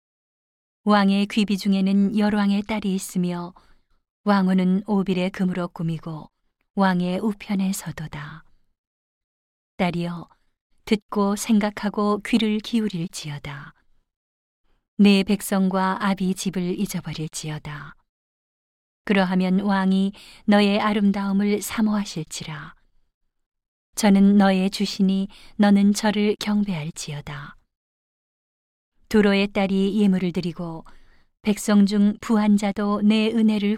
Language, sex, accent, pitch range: Korean, female, native, 175-205 Hz